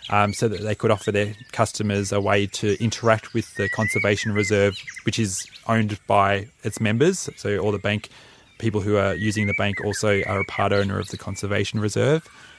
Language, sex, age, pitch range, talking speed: English, male, 20-39, 100-115 Hz, 195 wpm